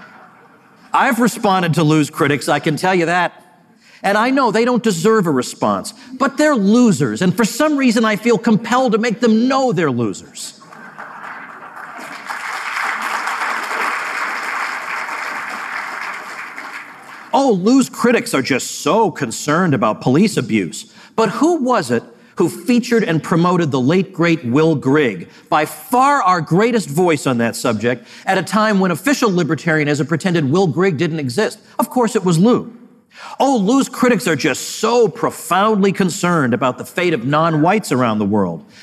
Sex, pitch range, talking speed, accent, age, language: male, 160-235 Hz, 155 wpm, American, 50-69, English